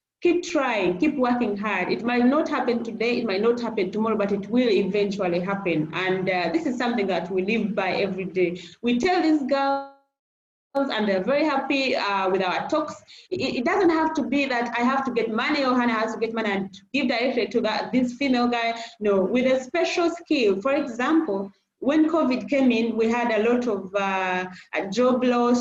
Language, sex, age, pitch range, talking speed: English, female, 30-49, 205-265 Hz, 205 wpm